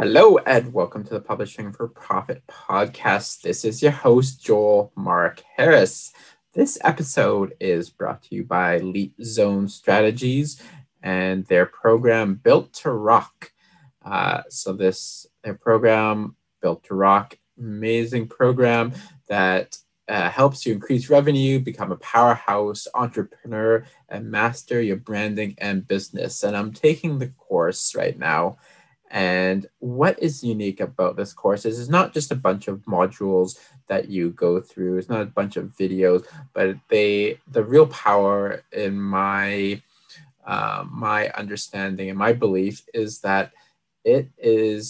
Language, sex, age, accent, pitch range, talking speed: English, male, 20-39, American, 95-120 Hz, 145 wpm